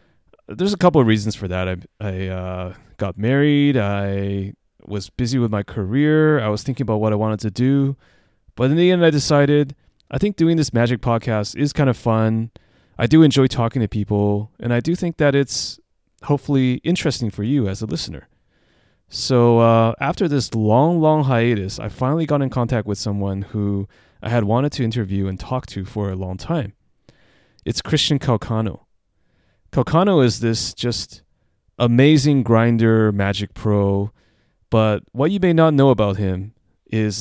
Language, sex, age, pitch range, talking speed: English, male, 30-49, 100-135 Hz, 175 wpm